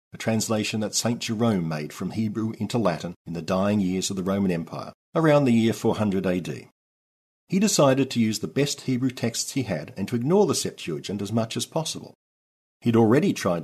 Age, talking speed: 50-69, 200 wpm